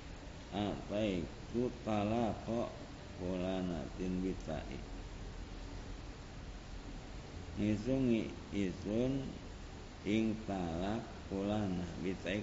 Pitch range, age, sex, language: 85-105 Hz, 50-69, male, Indonesian